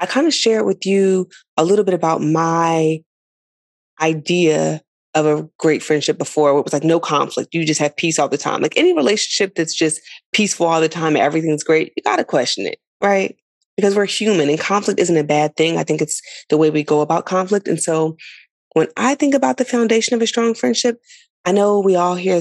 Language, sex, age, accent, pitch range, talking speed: English, female, 20-39, American, 160-200 Hz, 220 wpm